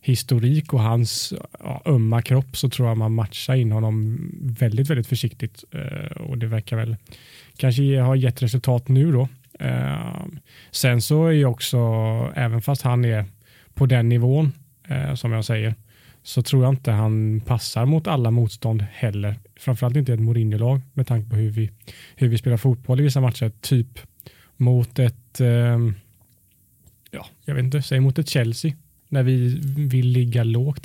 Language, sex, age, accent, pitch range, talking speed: Swedish, male, 20-39, Norwegian, 115-135 Hz, 165 wpm